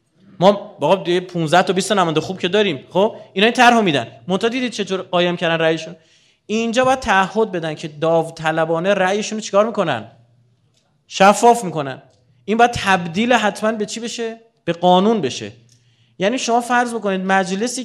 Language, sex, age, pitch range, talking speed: Persian, male, 30-49, 155-235 Hz, 160 wpm